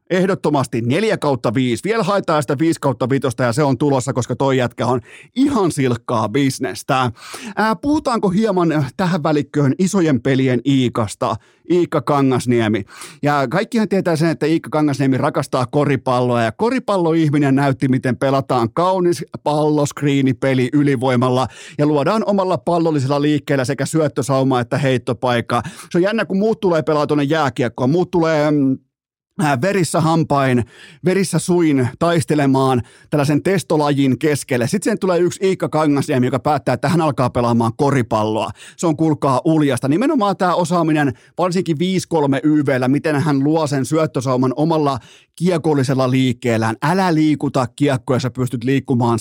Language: Finnish